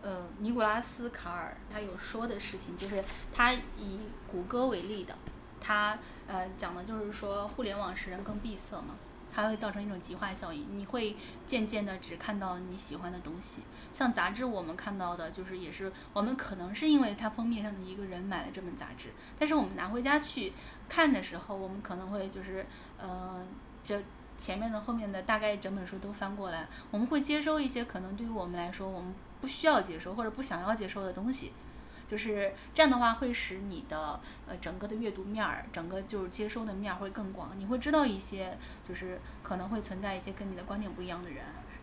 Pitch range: 190-240 Hz